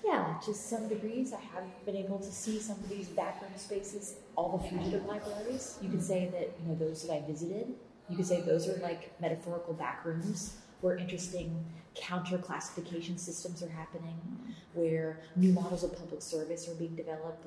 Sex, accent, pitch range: female, American, 165-195 Hz